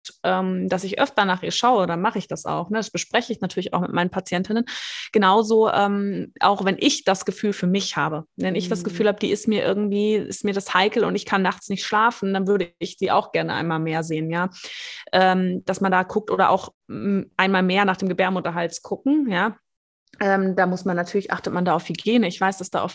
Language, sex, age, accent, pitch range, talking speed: German, female, 20-39, German, 185-220 Hz, 220 wpm